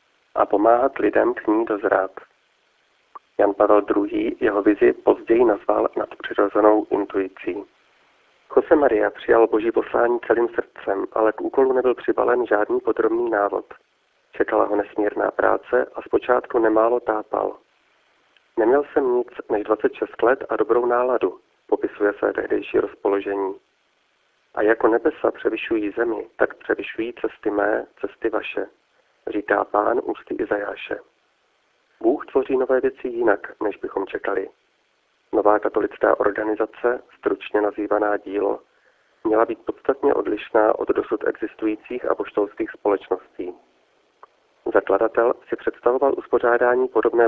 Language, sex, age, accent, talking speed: Czech, male, 40-59, native, 120 wpm